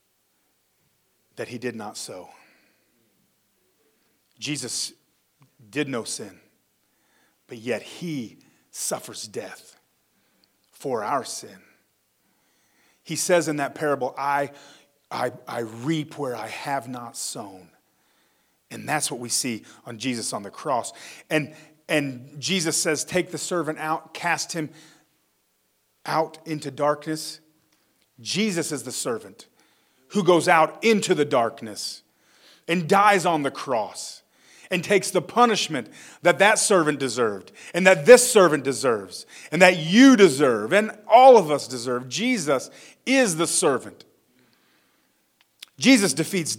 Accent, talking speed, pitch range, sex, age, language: American, 125 wpm, 140-185 Hz, male, 40-59, English